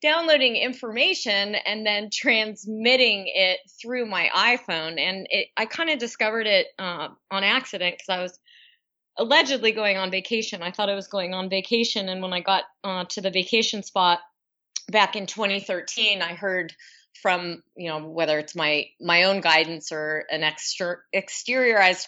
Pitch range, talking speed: 180-235 Hz, 165 wpm